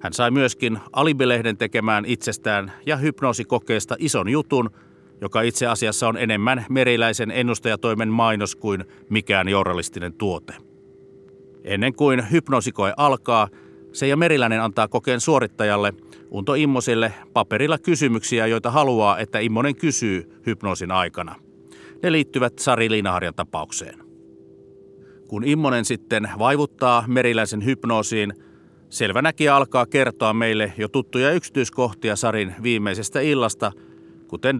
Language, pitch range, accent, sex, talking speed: Finnish, 95-125 Hz, native, male, 110 wpm